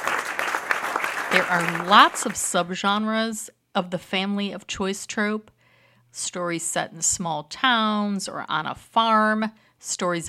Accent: American